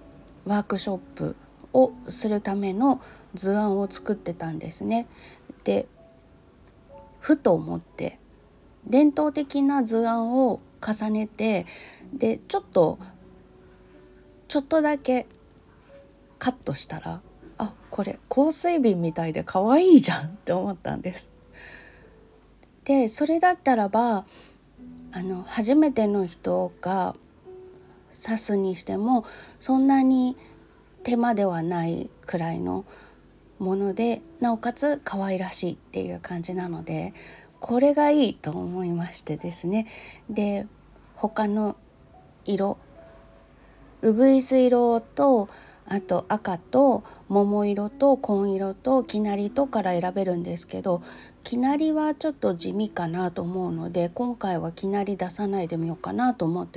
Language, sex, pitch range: Japanese, female, 180-255 Hz